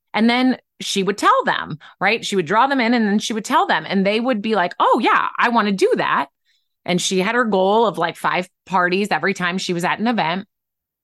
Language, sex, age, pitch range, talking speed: English, female, 30-49, 185-230 Hz, 250 wpm